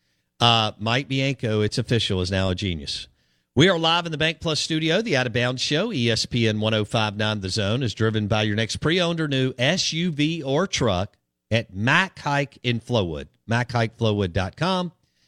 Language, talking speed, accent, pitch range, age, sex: English, 175 wpm, American, 100-125 Hz, 50-69, male